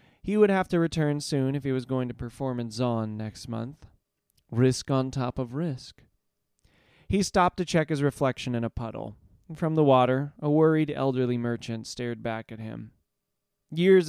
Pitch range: 115-145 Hz